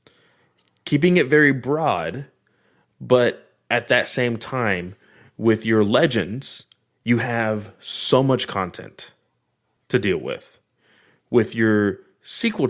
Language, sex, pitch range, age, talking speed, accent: English, male, 100-125 Hz, 20-39, 110 wpm, American